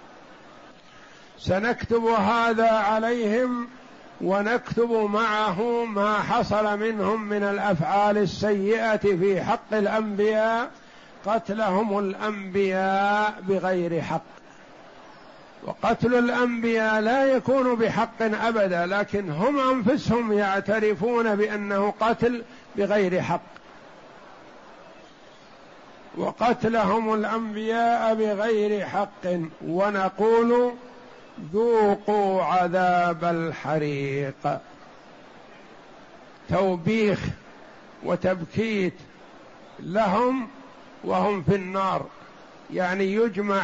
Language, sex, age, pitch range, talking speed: Arabic, male, 50-69, 195-230 Hz, 65 wpm